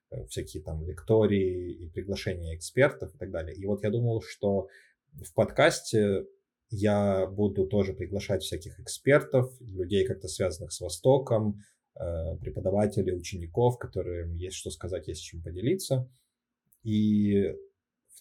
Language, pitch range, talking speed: Russian, 90-115 Hz, 130 wpm